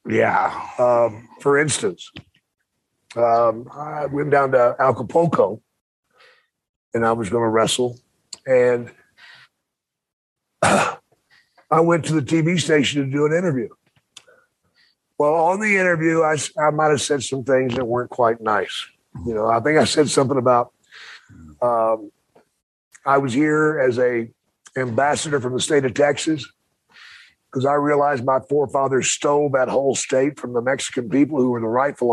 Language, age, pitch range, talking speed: English, 50-69, 130-155 Hz, 145 wpm